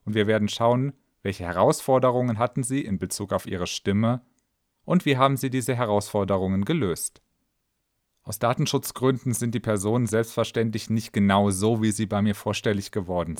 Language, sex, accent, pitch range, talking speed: German, male, German, 105-135 Hz, 155 wpm